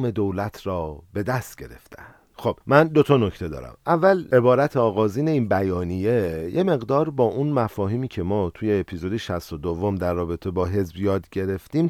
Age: 40-59